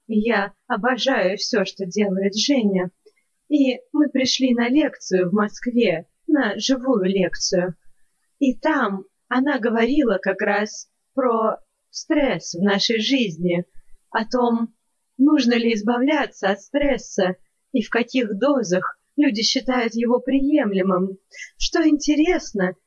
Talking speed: 115 wpm